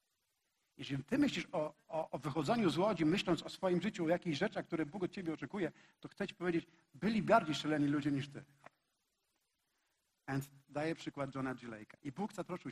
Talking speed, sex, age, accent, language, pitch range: 180 wpm, male, 50-69, native, Polish, 135-175 Hz